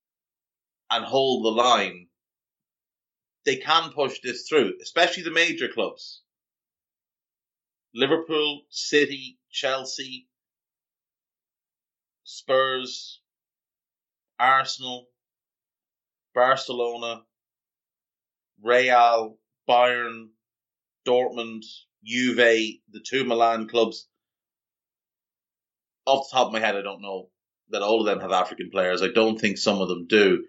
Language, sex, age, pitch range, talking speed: English, male, 30-49, 110-125 Hz, 100 wpm